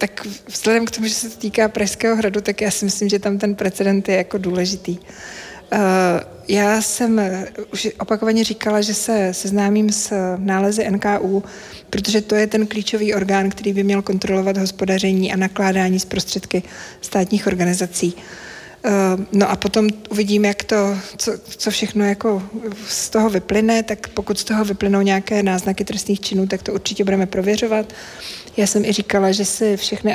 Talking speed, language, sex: 165 wpm, Czech, female